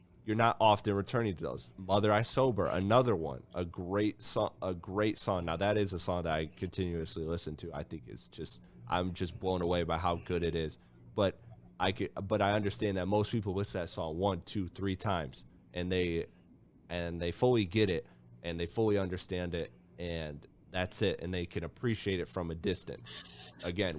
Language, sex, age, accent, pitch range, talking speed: English, male, 30-49, American, 85-100 Hz, 200 wpm